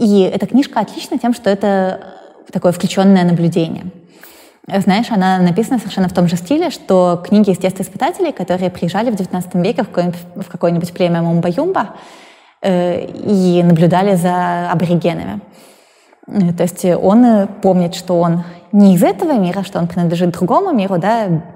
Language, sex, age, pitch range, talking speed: Russian, female, 20-39, 175-200 Hz, 140 wpm